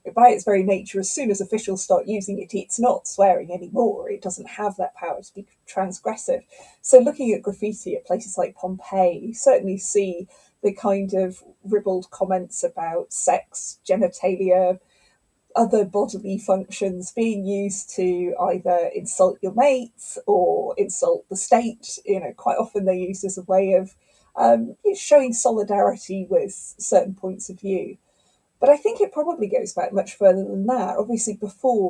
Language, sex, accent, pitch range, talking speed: English, female, British, 190-235 Hz, 165 wpm